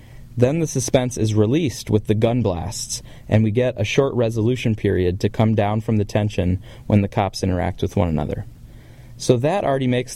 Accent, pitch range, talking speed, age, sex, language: American, 105-125 Hz, 195 wpm, 20-39, male, English